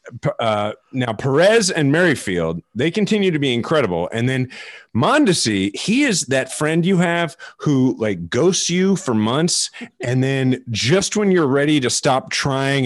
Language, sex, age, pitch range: English, male, 30-49, 115-165 Hz